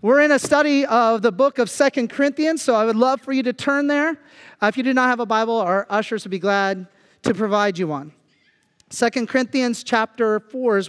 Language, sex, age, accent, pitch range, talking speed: English, male, 40-59, American, 220-265 Hz, 225 wpm